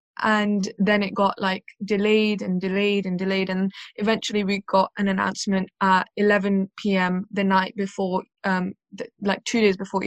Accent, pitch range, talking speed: British, 190-210 Hz, 165 wpm